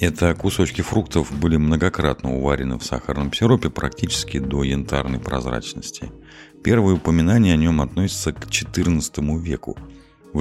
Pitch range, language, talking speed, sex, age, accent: 65-85 Hz, Russian, 125 wpm, male, 50-69, native